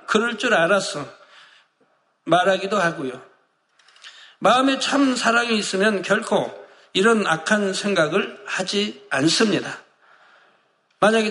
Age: 60-79